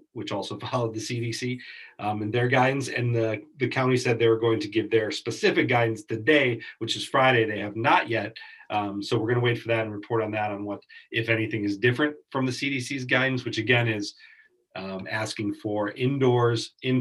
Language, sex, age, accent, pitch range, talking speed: English, male, 40-59, American, 110-130 Hz, 210 wpm